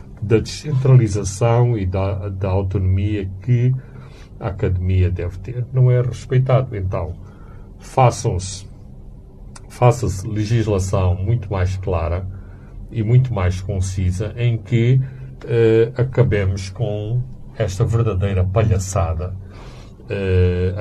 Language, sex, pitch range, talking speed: Portuguese, male, 95-120 Hz, 95 wpm